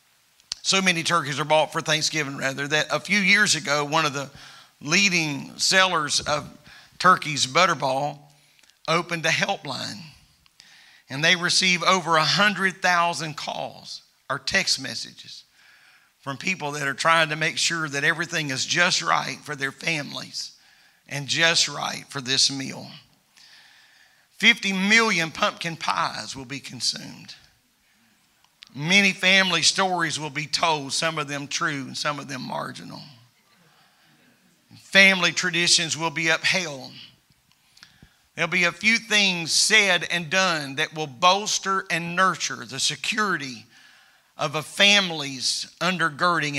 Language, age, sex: English, 50-69, male